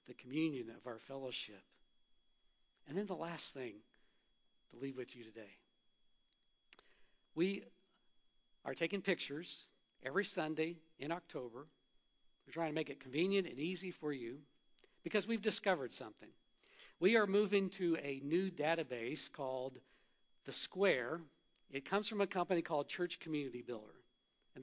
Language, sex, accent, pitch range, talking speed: English, male, American, 150-195 Hz, 135 wpm